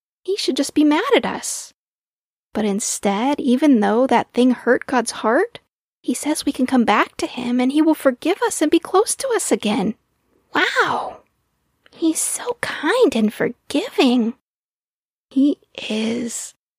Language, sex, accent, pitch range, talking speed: English, female, American, 230-310 Hz, 155 wpm